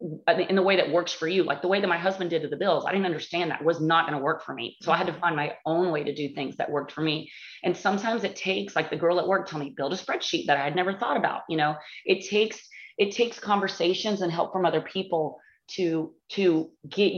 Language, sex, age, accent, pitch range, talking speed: English, female, 30-49, American, 160-195 Hz, 275 wpm